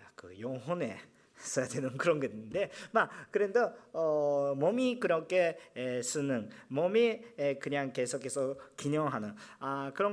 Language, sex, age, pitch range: Korean, male, 40-59, 140-220 Hz